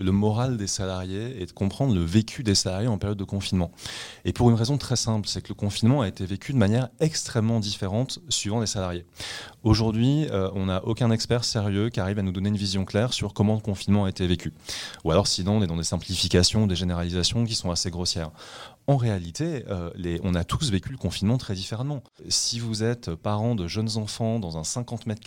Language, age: French, 30-49